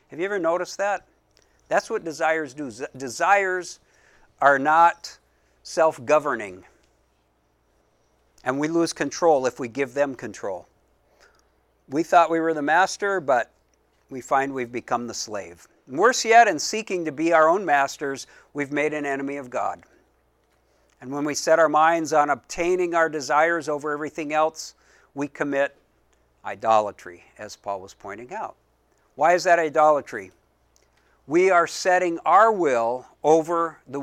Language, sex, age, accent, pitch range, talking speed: English, male, 60-79, American, 100-165 Hz, 145 wpm